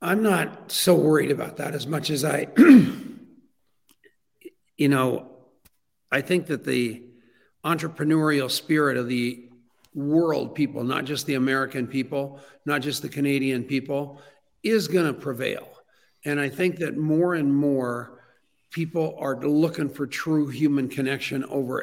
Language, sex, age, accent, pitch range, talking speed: English, male, 50-69, American, 135-160 Hz, 135 wpm